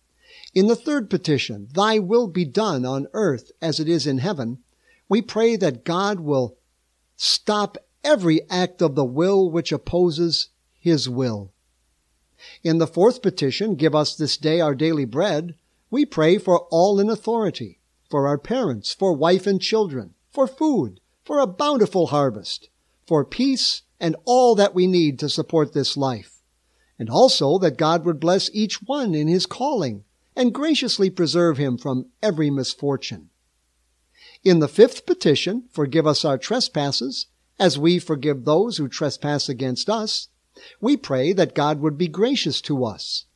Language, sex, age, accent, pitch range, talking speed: English, male, 60-79, American, 135-200 Hz, 160 wpm